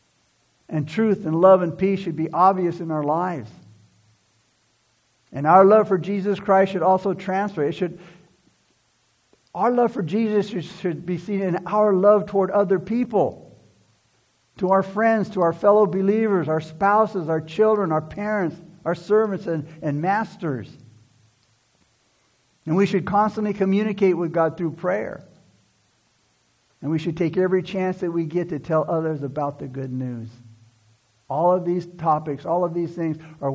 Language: English